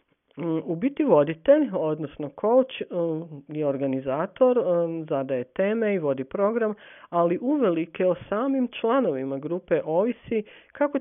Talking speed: 110 wpm